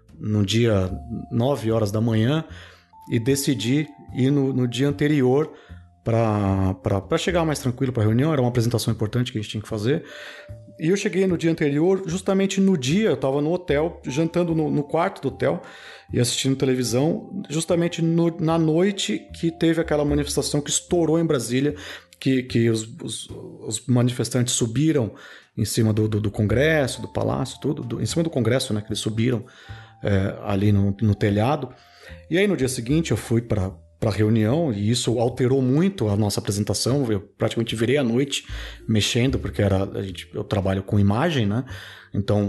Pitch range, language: 105-145 Hz, Portuguese